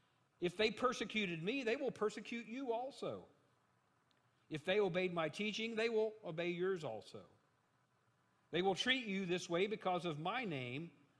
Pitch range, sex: 125-175 Hz, male